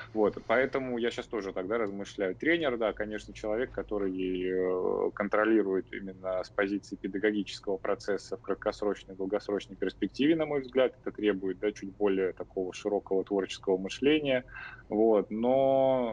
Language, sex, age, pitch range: Russian, male, 20-39, 95-110 Hz